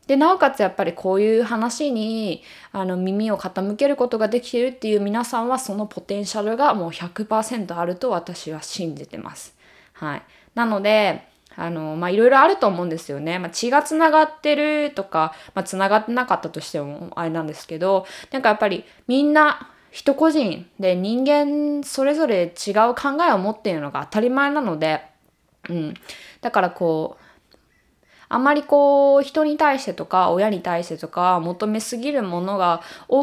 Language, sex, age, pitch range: Japanese, female, 20-39, 170-265 Hz